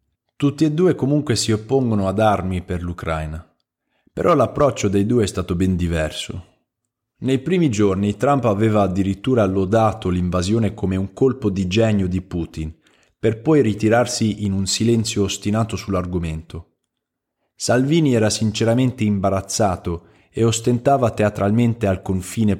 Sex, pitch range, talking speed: male, 95-115 Hz, 135 wpm